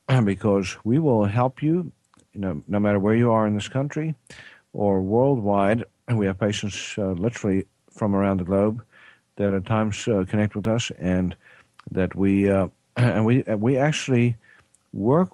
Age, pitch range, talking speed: 50-69, 95-120 Hz, 170 wpm